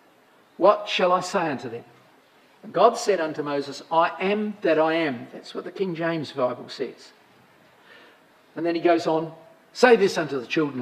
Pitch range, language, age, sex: 160-220 Hz, English, 50-69, male